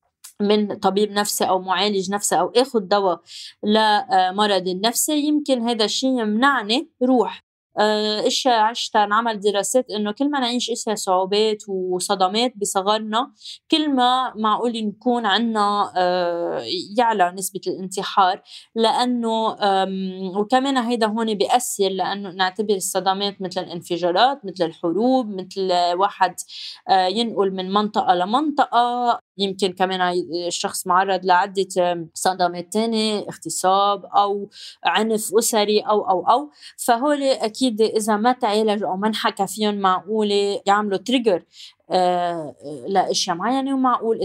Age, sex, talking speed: 20-39, female, 115 wpm